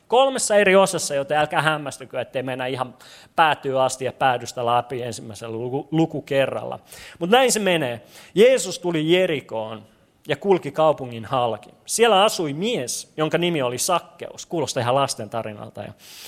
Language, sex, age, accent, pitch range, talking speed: Finnish, male, 30-49, native, 125-195 Hz, 145 wpm